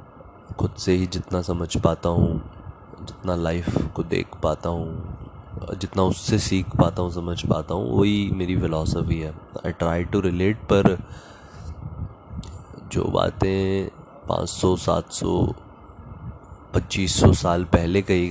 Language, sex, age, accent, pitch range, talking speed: Hindi, male, 20-39, native, 85-105 Hz, 125 wpm